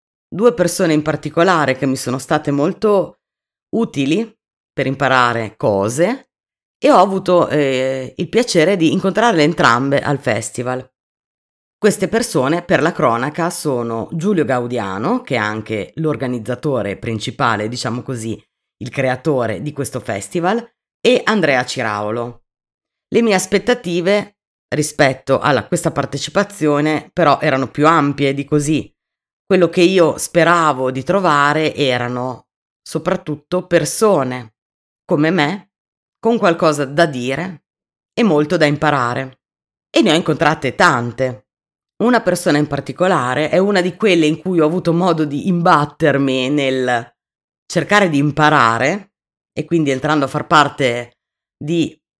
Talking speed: 125 wpm